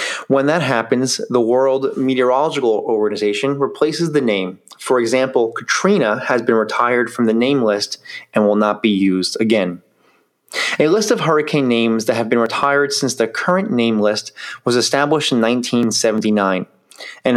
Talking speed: 155 wpm